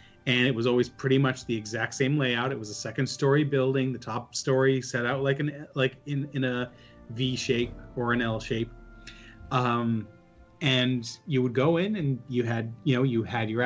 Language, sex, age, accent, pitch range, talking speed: English, male, 30-49, American, 120-145 Hz, 205 wpm